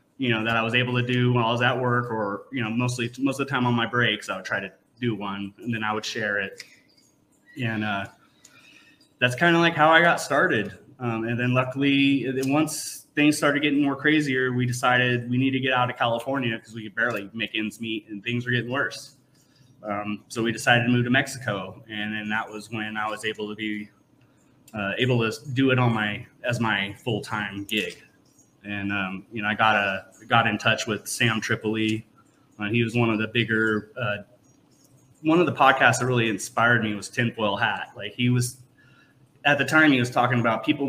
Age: 20-39